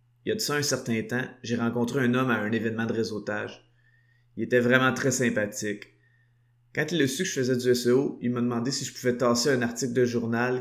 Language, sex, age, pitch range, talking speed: French, male, 20-39, 115-130 Hz, 240 wpm